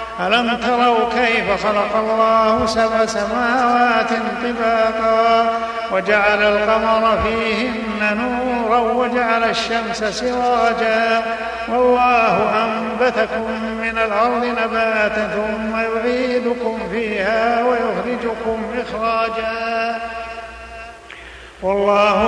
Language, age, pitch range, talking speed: Arabic, 50-69, 225-240 Hz, 65 wpm